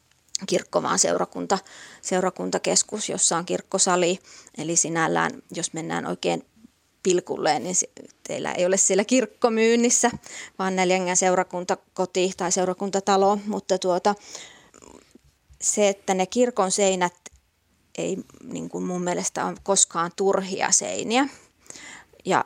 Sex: female